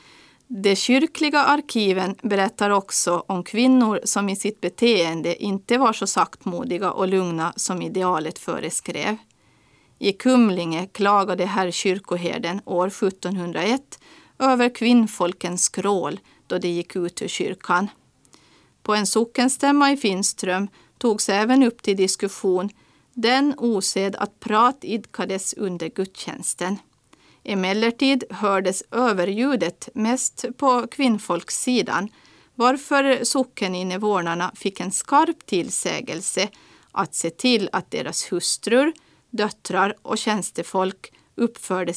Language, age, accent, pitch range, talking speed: Swedish, 40-59, native, 185-245 Hz, 110 wpm